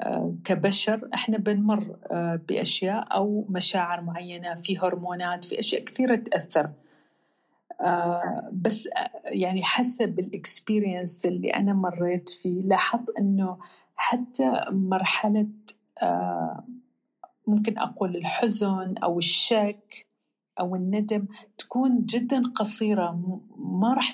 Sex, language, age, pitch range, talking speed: female, Arabic, 40-59, 185-235 Hz, 90 wpm